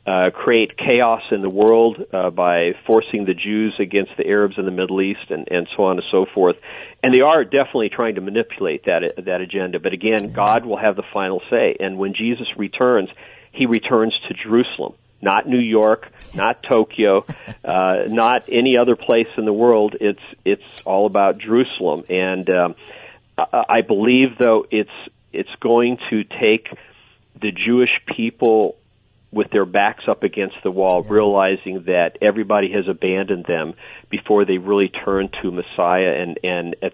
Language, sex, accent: English, male, American